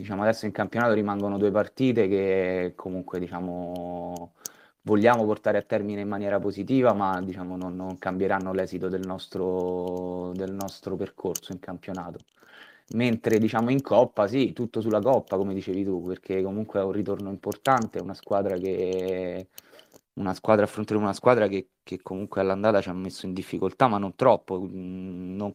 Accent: native